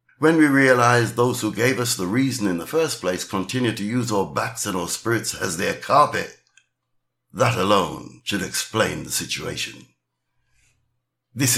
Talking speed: 160 wpm